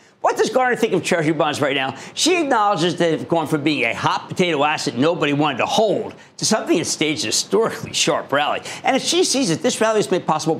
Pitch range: 135-190 Hz